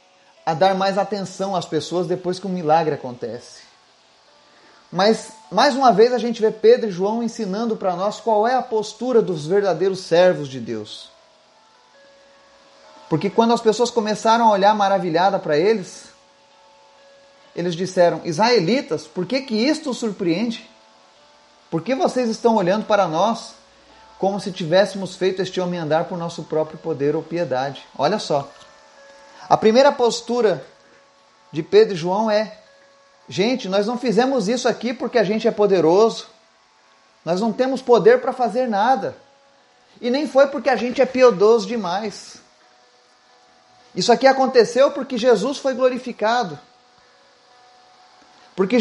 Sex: male